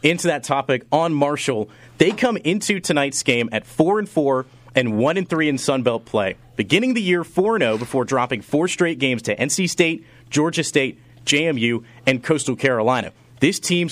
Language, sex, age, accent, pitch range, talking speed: English, male, 30-49, American, 125-155 Hz, 185 wpm